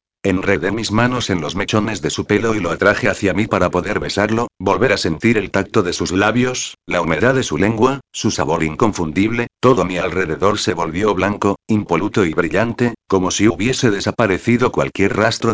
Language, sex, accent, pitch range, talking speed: Spanish, male, Spanish, 95-115 Hz, 185 wpm